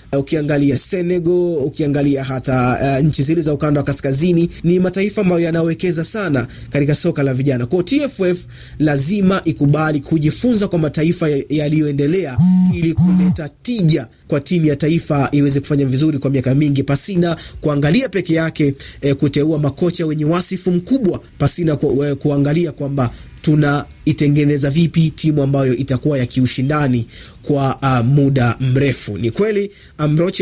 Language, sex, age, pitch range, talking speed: Swahili, male, 30-49, 140-175 Hz, 135 wpm